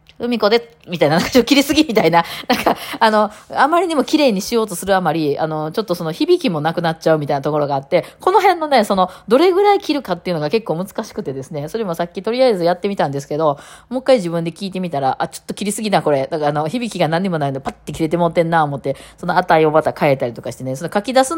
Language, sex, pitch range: Japanese, female, 150-225 Hz